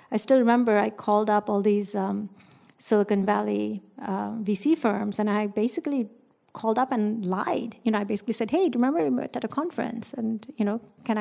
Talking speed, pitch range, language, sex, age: 210 wpm, 205-245 Hz, English, female, 50-69